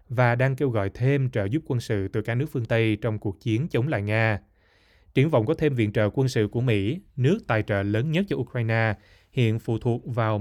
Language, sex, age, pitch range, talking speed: Vietnamese, male, 20-39, 105-125 Hz, 235 wpm